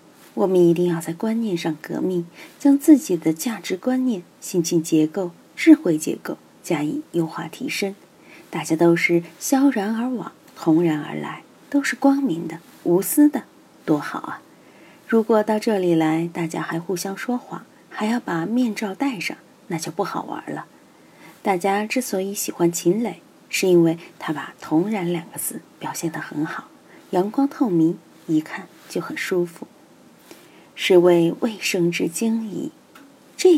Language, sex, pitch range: Chinese, female, 165-235 Hz